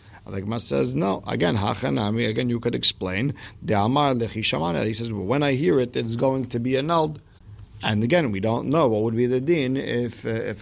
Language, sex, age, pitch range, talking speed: English, male, 50-69, 110-140 Hz, 185 wpm